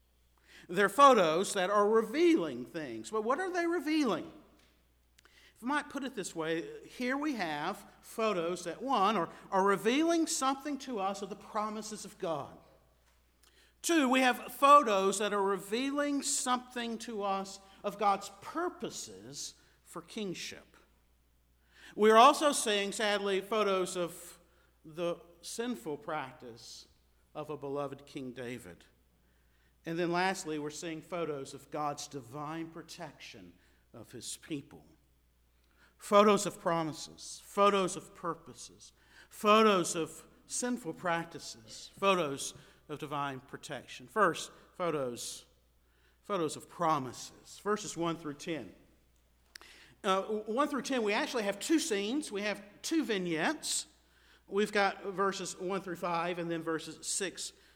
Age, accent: 50-69, American